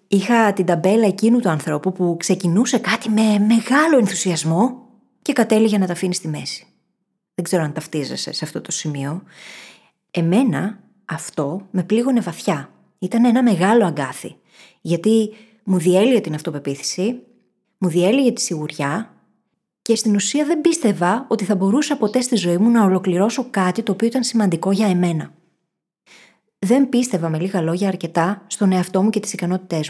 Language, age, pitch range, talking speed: Greek, 20-39, 170-220 Hz, 155 wpm